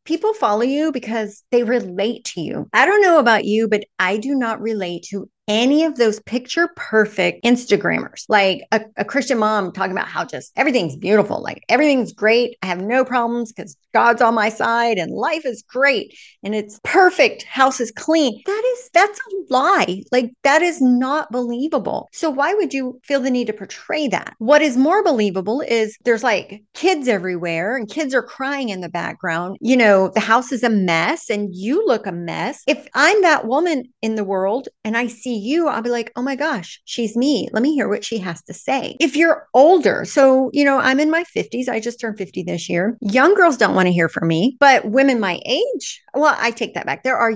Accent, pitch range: American, 205-280 Hz